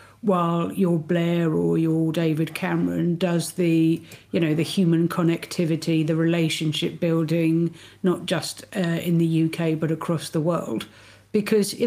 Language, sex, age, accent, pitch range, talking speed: English, female, 50-69, British, 160-185 Hz, 145 wpm